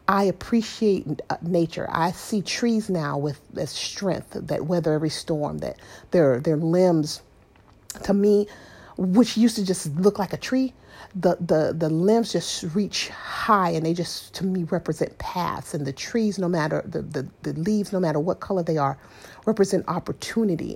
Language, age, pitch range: English, 40-59, 155-200 Hz